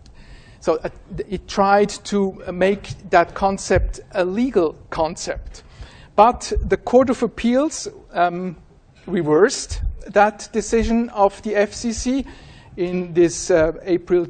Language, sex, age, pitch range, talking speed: English, male, 50-69, 175-210 Hz, 110 wpm